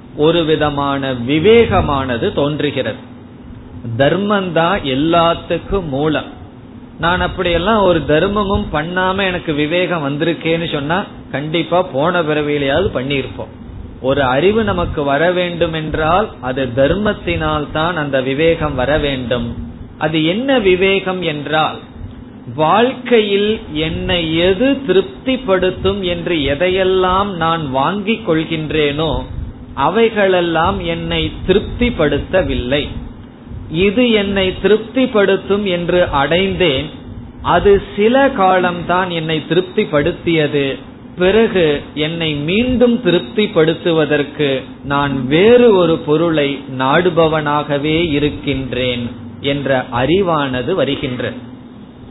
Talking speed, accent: 85 wpm, native